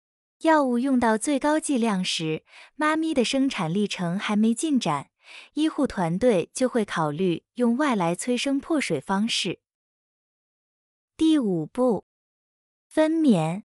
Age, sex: 20-39, female